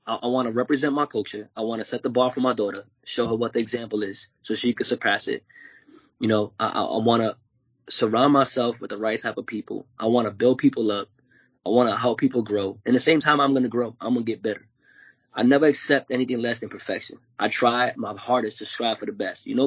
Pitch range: 120-140 Hz